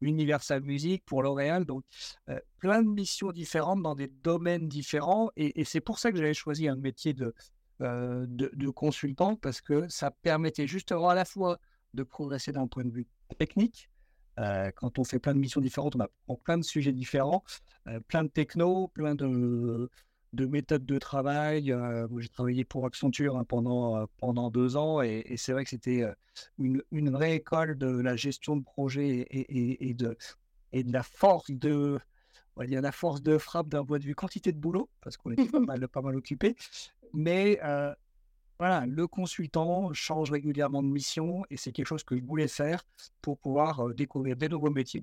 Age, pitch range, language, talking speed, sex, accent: 50-69, 130-160 Hz, French, 195 wpm, male, French